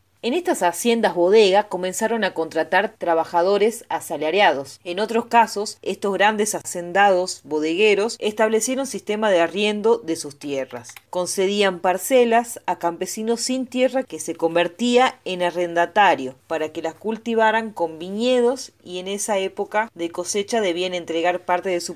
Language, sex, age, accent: Spanish, female, 30-49, Argentinian